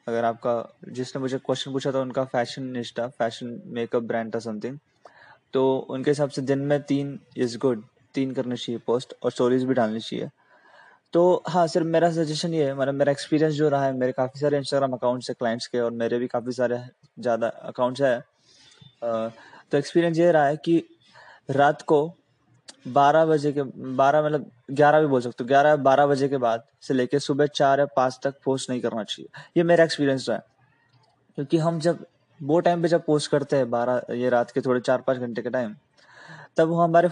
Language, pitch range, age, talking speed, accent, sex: Hindi, 125-150 Hz, 20-39, 200 wpm, native, male